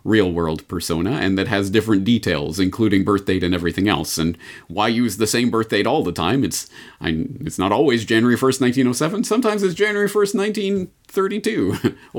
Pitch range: 95-140 Hz